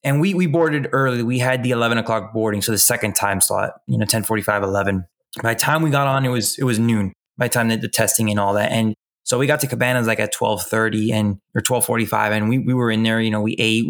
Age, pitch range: 20-39, 110-130 Hz